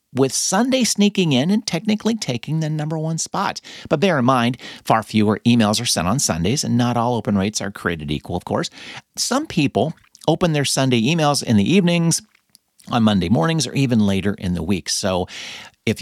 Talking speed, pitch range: 195 wpm, 100-165 Hz